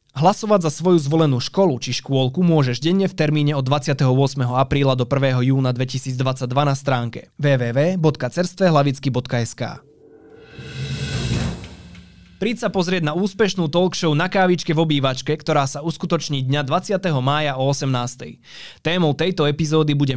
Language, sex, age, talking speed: Slovak, male, 20-39, 130 wpm